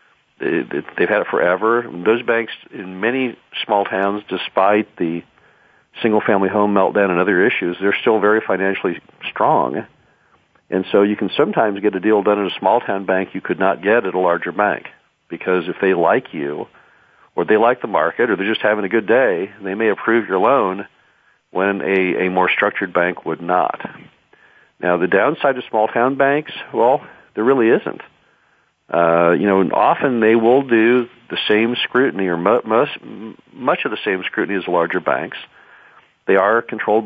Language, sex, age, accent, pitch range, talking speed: English, male, 50-69, American, 90-110 Hz, 175 wpm